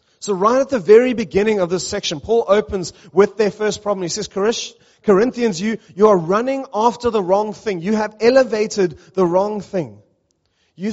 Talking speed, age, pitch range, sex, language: 180 wpm, 30-49, 160-215 Hz, male, English